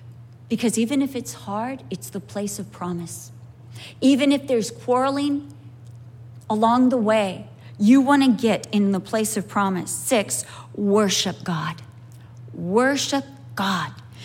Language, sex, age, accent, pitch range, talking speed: English, female, 40-59, American, 170-250 Hz, 130 wpm